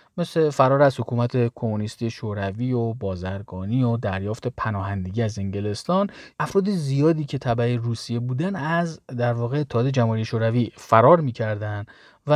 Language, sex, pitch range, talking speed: Persian, male, 115-150 Hz, 135 wpm